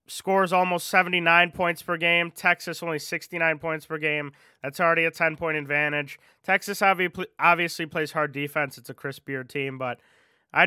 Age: 20-39